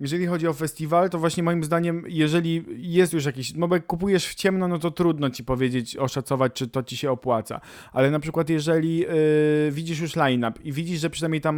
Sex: male